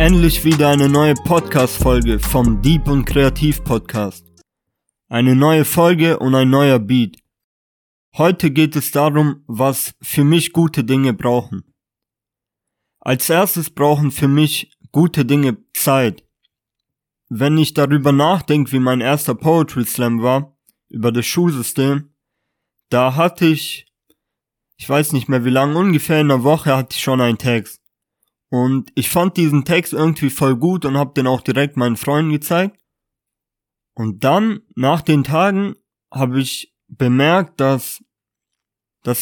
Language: German